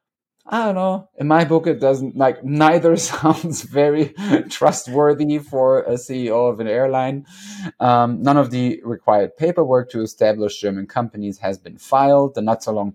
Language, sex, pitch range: English, male, 105-140 Hz